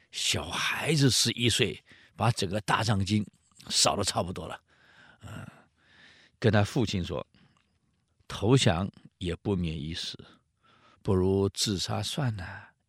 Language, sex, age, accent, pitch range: Chinese, male, 50-69, native, 100-120 Hz